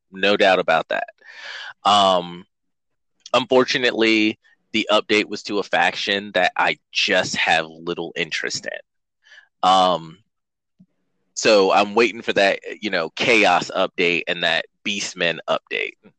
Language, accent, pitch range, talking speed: English, American, 95-140 Hz, 120 wpm